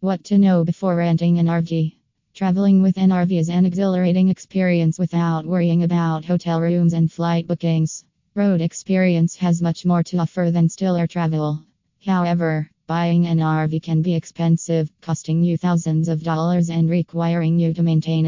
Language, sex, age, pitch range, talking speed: English, female, 20-39, 165-180 Hz, 165 wpm